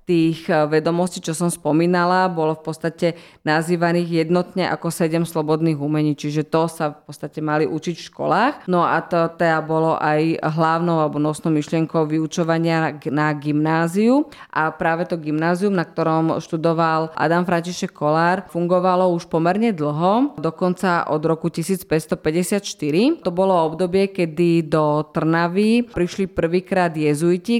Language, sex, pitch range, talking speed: Slovak, female, 155-180 Hz, 140 wpm